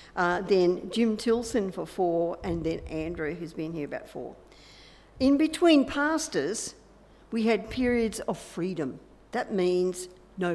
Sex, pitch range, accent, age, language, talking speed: female, 180-235 Hz, Australian, 60-79, English, 140 wpm